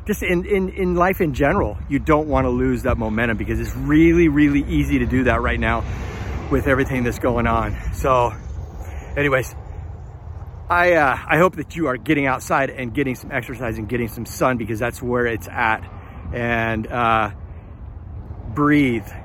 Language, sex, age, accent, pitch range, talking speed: English, male, 40-59, American, 105-150 Hz, 165 wpm